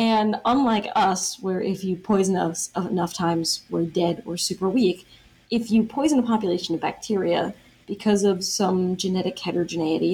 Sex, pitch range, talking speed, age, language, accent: female, 170-205 Hz, 160 wpm, 20-39, English, American